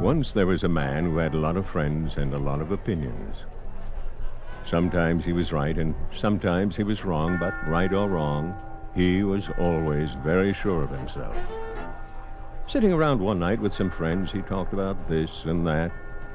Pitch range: 80-110 Hz